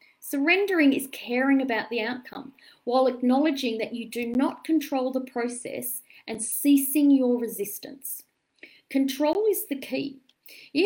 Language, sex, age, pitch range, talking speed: English, female, 40-59, 215-280 Hz, 135 wpm